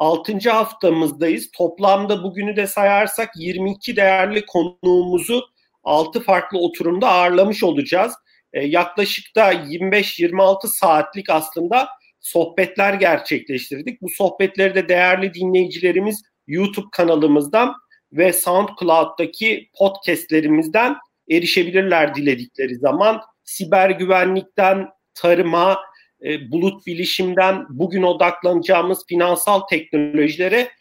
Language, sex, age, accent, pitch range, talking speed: Turkish, male, 40-59, native, 165-195 Hz, 85 wpm